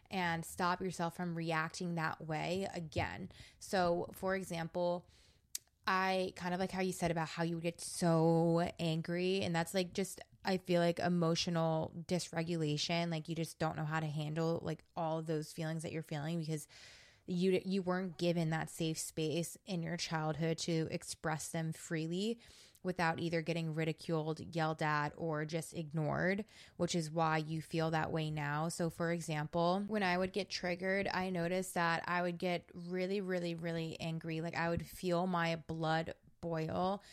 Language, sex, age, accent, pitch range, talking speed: English, female, 20-39, American, 160-180 Hz, 175 wpm